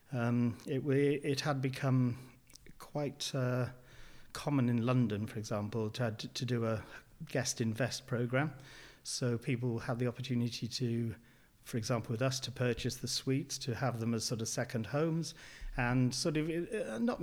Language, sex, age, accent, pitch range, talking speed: English, male, 40-59, British, 115-130 Hz, 160 wpm